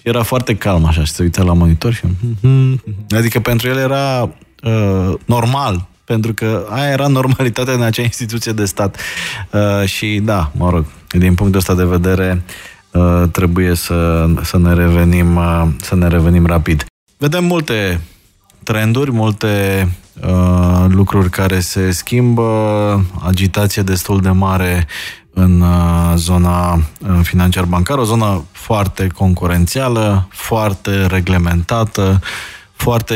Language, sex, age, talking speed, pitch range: Romanian, male, 20-39, 130 wpm, 85-105 Hz